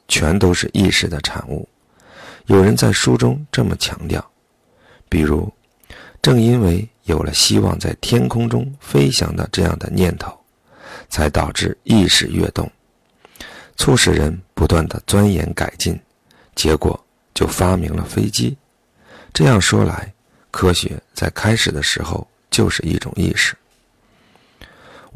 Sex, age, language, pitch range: male, 50-69, Chinese, 80-105 Hz